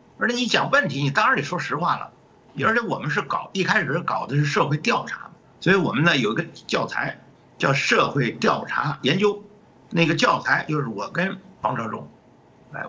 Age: 50-69